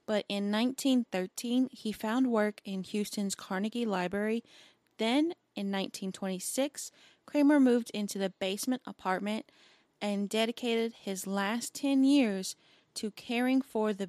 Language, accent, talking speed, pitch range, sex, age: English, American, 125 wpm, 190-230 Hz, female, 20-39